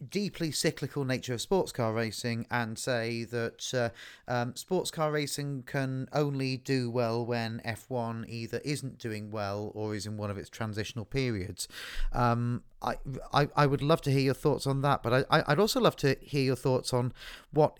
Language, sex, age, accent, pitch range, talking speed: English, male, 40-59, British, 110-140 Hz, 190 wpm